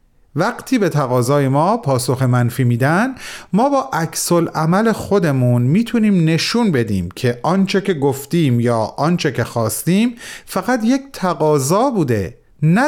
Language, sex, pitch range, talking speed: Persian, male, 130-205 Hz, 130 wpm